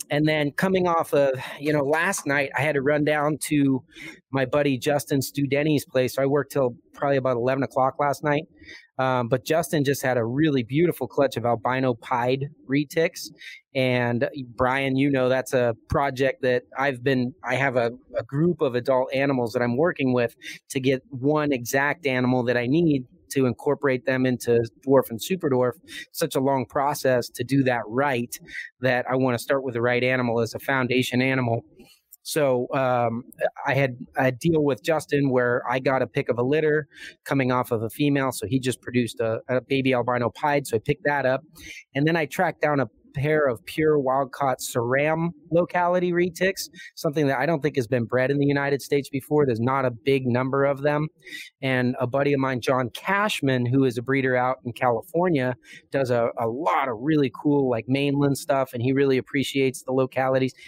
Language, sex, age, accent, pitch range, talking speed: English, male, 30-49, American, 125-145 Hz, 200 wpm